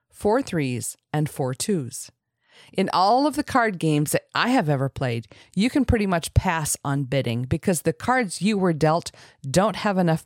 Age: 40-59